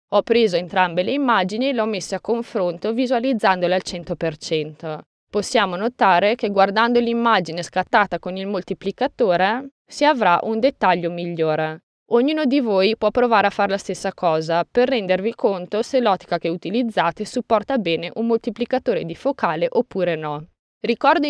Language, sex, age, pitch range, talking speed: Italian, female, 20-39, 180-240 Hz, 150 wpm